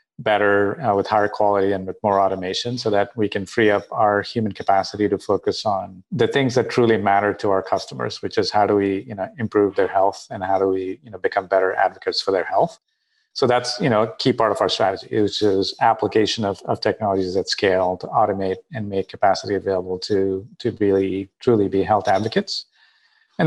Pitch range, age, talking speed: 100-115 Hz, 40-59, 210 wpm